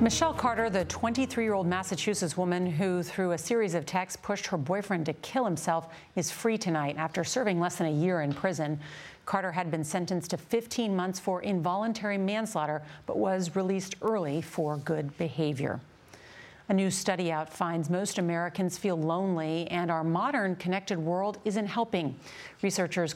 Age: 40-59